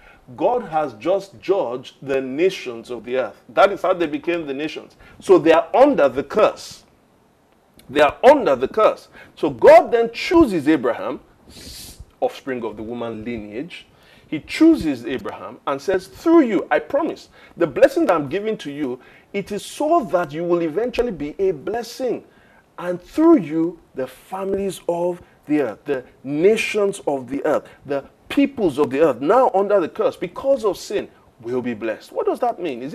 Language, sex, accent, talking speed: English, male, Nigerian, 175 wpm